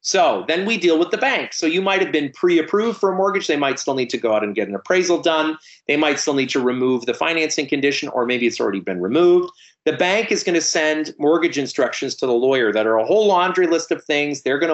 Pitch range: 130-175 Hz